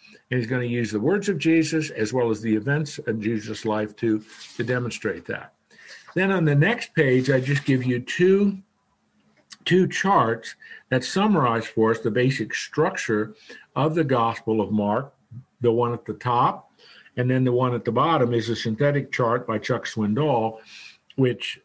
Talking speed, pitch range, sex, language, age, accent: 180 wpm, 115-155 Hz, male, English, 50-69, American